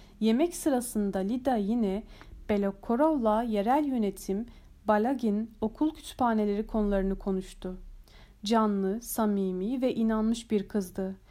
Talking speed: 95 wpm